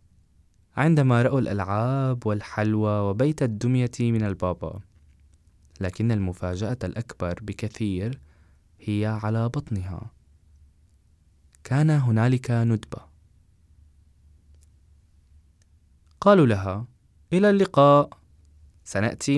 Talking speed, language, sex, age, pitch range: 70 wpm, French, male, 20-39, 80-120 Hz